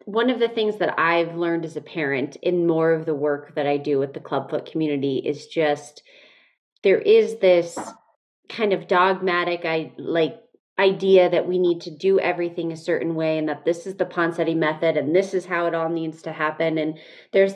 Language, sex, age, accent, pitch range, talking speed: English, female, 30-49, American, 160-195 Hz, 205 wpm